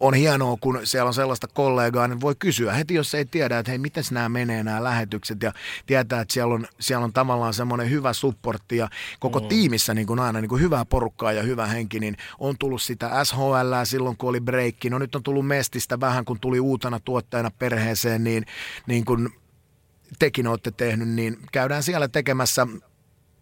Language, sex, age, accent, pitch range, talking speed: Finnish, male, 30-49, native, 115-135 Hz, 185 wpm